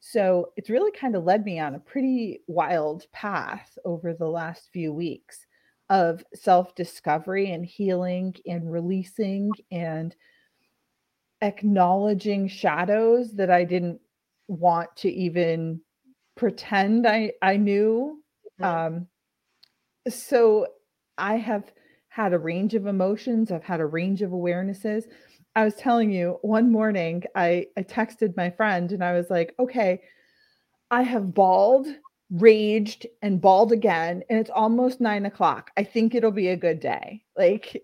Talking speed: 140 wpm